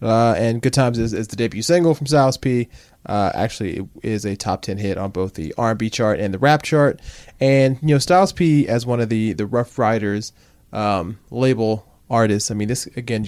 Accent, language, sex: American, English, male